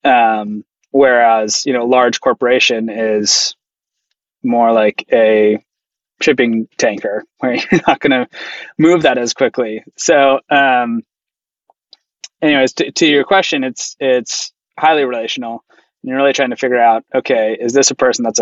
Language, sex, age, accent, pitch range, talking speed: English, male, 20-39, American, 115-135 Hz, 145 wpm